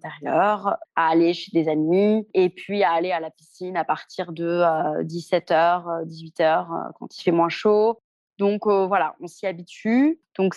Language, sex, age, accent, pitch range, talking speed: French, female, 20-39, French, 175-220 Hz, 165 wpm